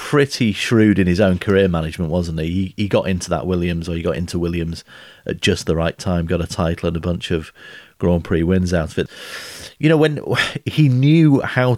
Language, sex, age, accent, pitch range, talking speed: English, male, 30-49, British, 85-105 Hz, 225 wpm